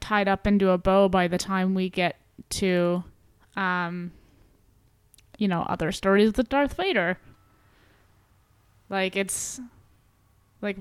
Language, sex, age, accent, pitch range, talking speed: English, female, 20-39, American, 180-215 Hz, 120 wpm